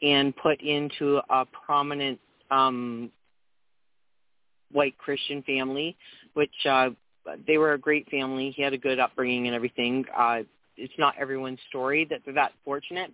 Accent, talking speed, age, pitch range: American, 145 wpm, 40-59, 130-150 Hz